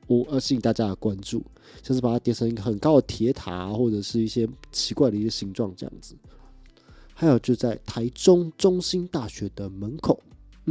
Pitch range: 105-140 Hz